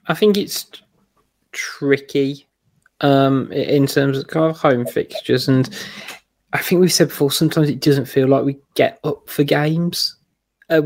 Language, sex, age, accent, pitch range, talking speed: English, male, 20-39, British, 135-150 Hz, 160 wpm